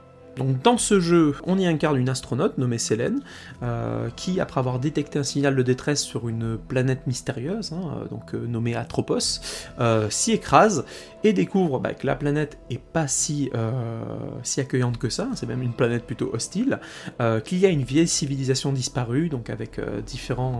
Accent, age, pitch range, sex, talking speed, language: French, 20-39, 120-150 Hz, male, 185 wpm, French